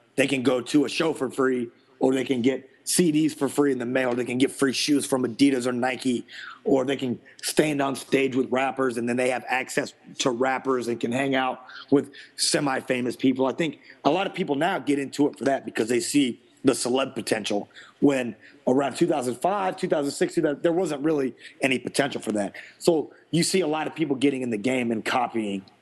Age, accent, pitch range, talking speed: 30-49, American, 120-145 Hz, 215 wpm